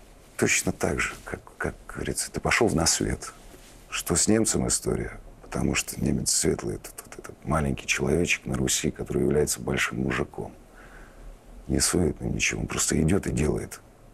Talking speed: 150 wpm